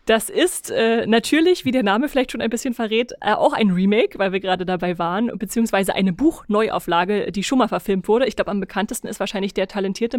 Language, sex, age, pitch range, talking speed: German, female, 30-49, 195-240 Hz, 220 wpm